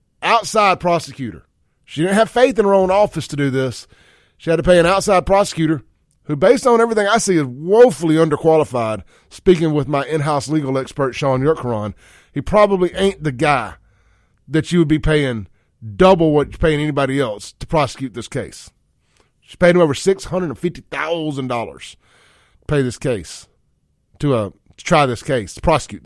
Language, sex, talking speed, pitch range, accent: English, male, 170 wpm, 115-180 Hz, American